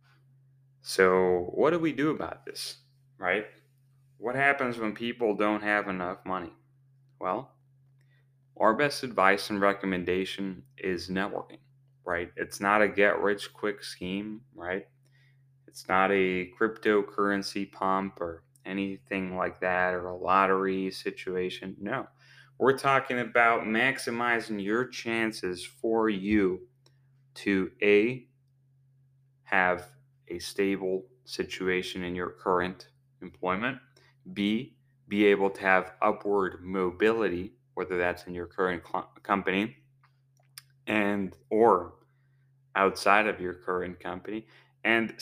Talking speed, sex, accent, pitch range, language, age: 110 wpm, male, American, 95-135 Hz, English, 30-49